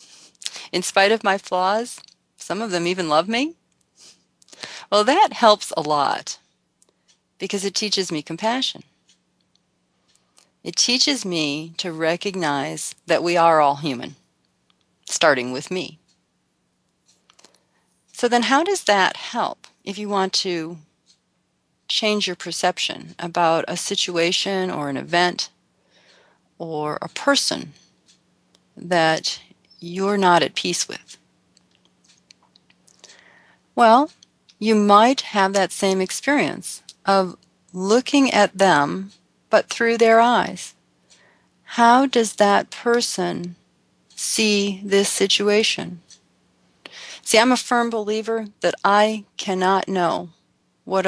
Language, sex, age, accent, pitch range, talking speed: English, female, 40-59, American, 165-220 Hz, 110 wpm